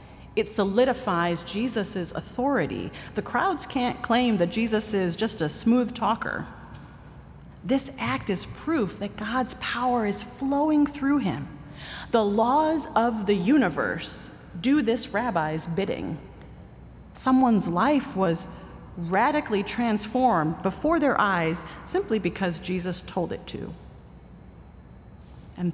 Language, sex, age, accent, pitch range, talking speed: English, female, 40-59, American, 185-245 Hz, 115 wpm